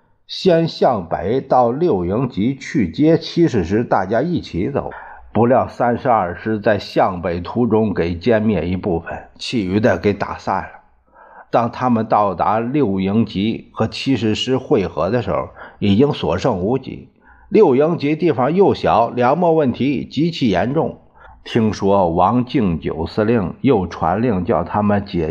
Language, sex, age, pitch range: Chinese, male, 50-69, 100-135 Hz